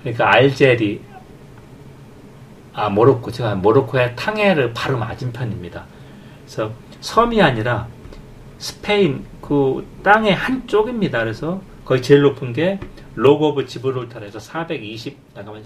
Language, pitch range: Korean, 105-150 Hz